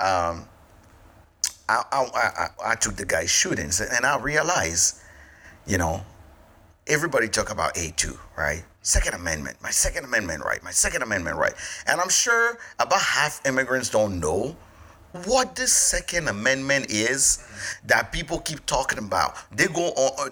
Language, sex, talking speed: English, male, 150 wpm